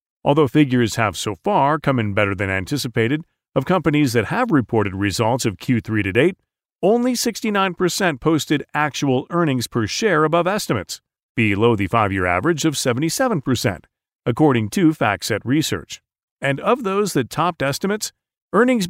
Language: English